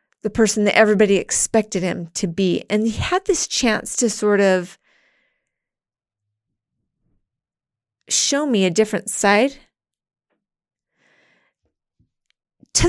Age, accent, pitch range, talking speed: 30-49, American, 185-235 Hz, 100 wpm